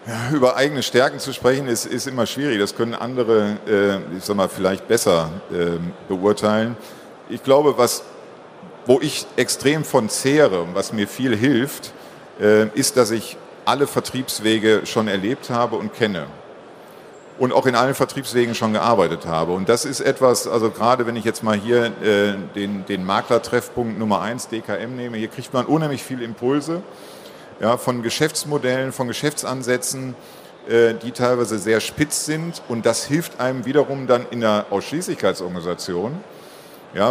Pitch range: 105-125 Hz